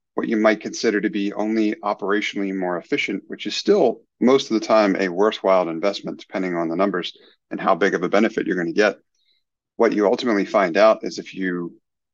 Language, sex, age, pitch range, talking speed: English, male, 30-49, 95-110 Hz, 205 wpm